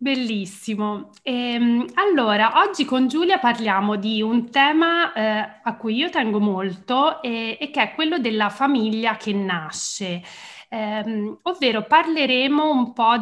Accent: native